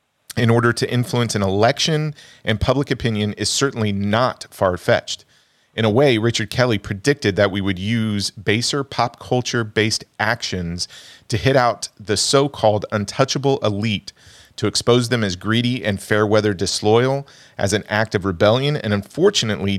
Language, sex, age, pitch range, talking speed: English, male, 40-59, 100-125 Hz, 160 wpm